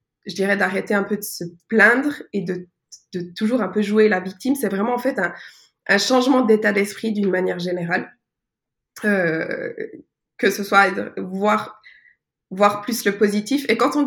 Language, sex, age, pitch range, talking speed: French, female, 20-39, 190-230 Hz, 180 wpm